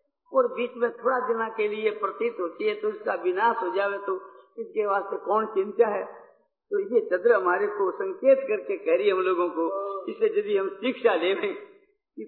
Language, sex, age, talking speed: Hindi, female, 50-69, 200 wpm